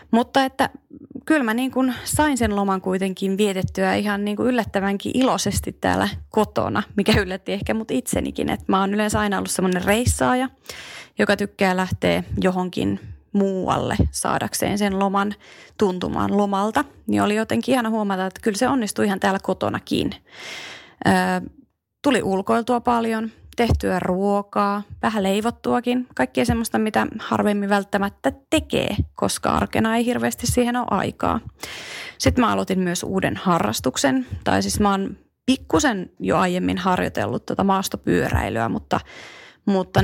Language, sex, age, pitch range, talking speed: Finnish, female, 30-49, 180-225 Hz, 125 wpm